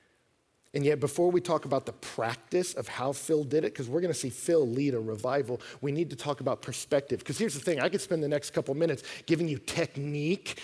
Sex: male